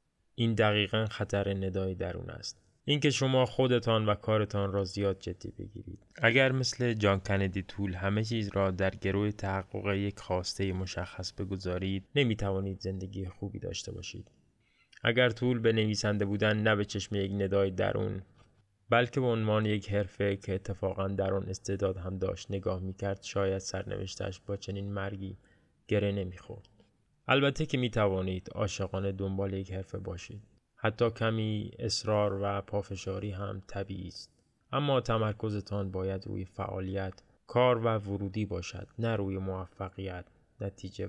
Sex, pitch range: male, 95-110 Hz